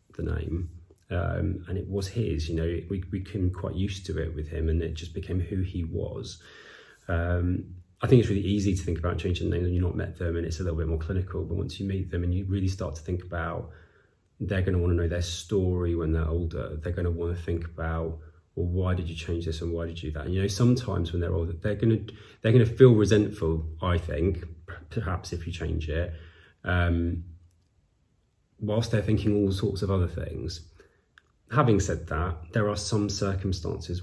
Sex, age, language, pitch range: male, 30-49, English, 85-100 Hz